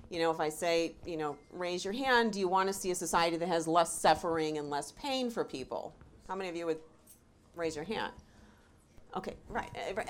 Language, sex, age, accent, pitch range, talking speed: English, female, 40-59, American, 170-225 Hz, 215 wpm